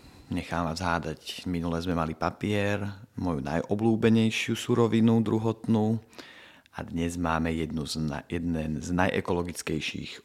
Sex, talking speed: male, 110 wpm